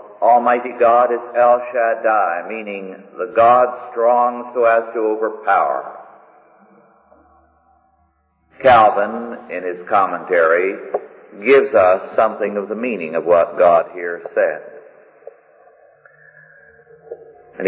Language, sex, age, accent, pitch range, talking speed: English, male, 50-69, American, 110-155 Hz, 100 wpm